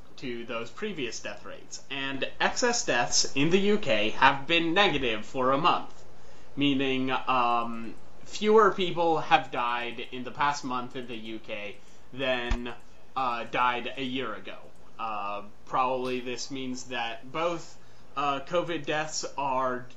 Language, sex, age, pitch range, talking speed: English, male, 20-39, 115-140 Hz, 140 wpm